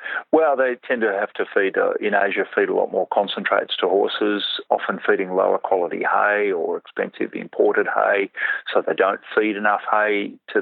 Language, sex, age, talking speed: English, male, 40-59, 185 wpm